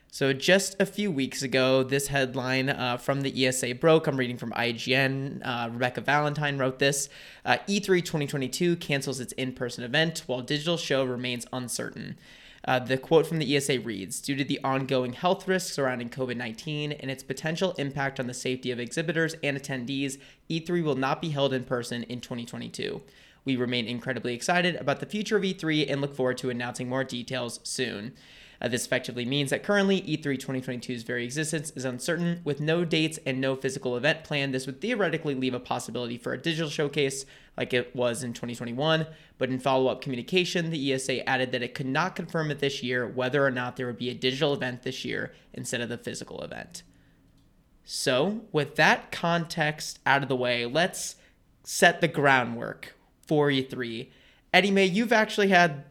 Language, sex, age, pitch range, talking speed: English, male, 20-39, 125-160 Hz, 180 wpm